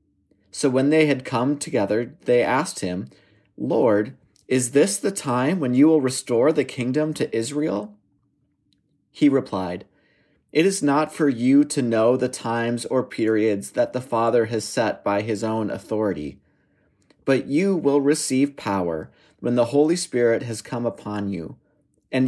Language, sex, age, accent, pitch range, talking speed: English, male, 30-49, American, 110-150 Hz, 155 wpm